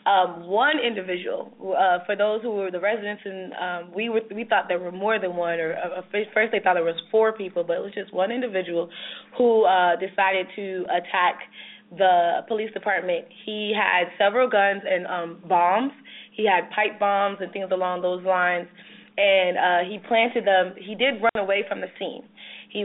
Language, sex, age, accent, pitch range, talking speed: English, female, 20-39, American, 180-215 Hz, 190 wpm